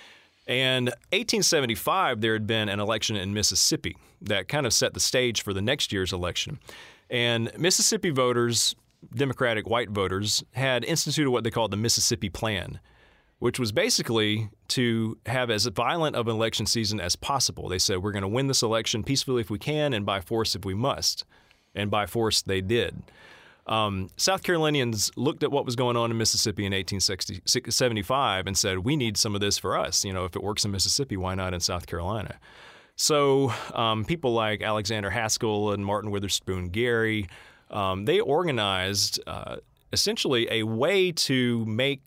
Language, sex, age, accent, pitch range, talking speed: English, male, 30-49, American, 100-125 Hz, 175 wpm